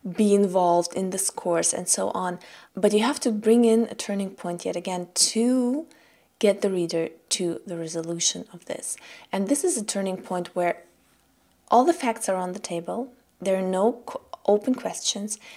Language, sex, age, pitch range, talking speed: German, female, 20-39, 175-215 Hz, 180 wpm